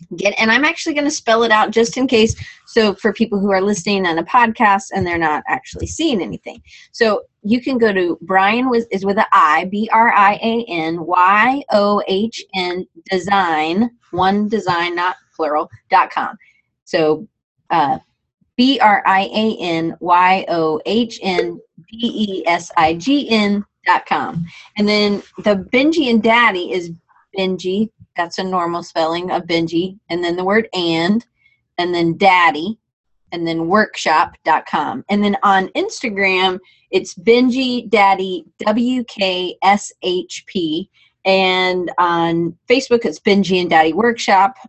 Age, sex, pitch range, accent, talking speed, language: 30-49, female, 170-225 Hz, American, 140 wpm, English